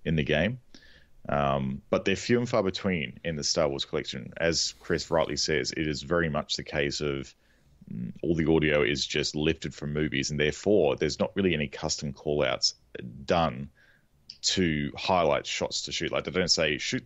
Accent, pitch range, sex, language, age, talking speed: Australian, 70-85 Hz, male, English, 30-49, 190 wpm